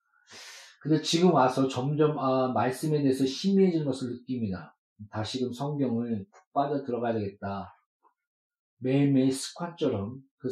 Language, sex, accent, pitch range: Korean, male, native, 120-155 Hz